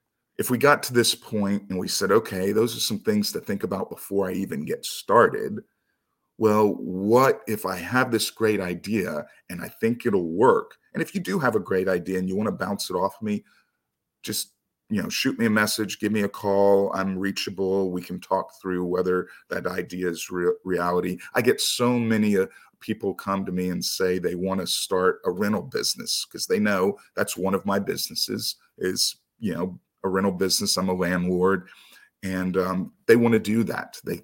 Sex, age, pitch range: male, 40-59, 90-120 Hz